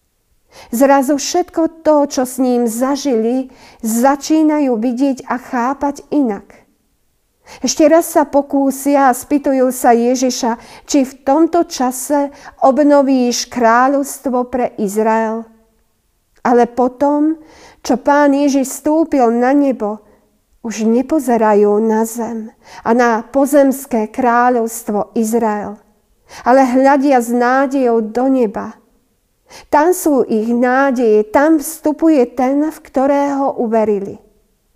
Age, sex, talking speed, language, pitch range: 40-59, female, 105 wpm, Slovak, 230-275 Hz